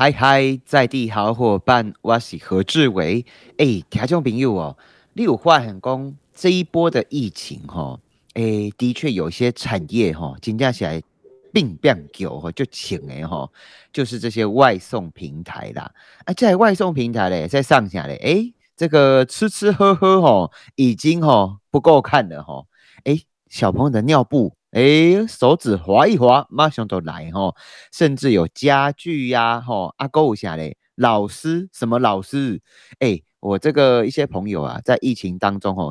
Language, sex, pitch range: Chinese, male, 105-150 Hz